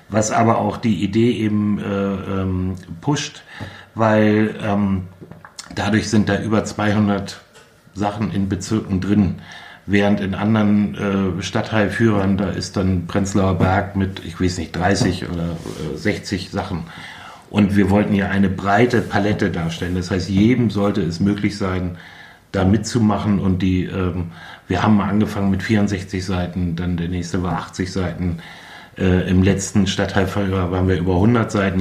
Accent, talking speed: German, 150 wpm